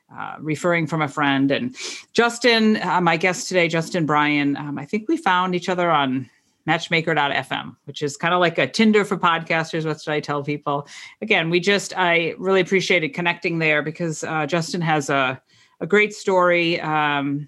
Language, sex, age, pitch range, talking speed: English, female, 40-59, 145-180 Hz, 180 wpm